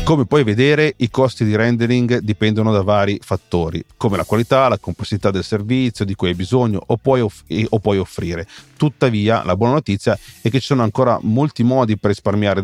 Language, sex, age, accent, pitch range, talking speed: Italian, male, 40-59, native, 100-125 Hz, 185 wpm